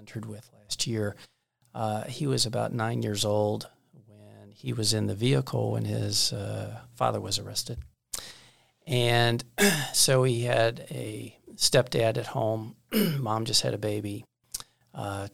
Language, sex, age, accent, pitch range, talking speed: English, male, 40-59, American, 105-125 Hz, 140 wpm